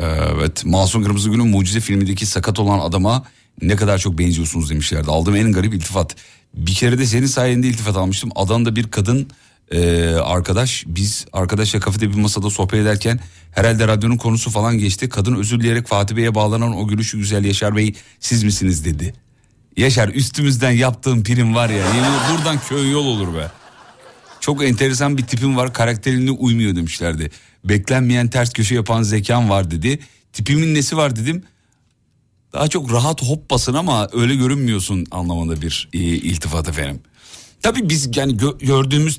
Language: Turkish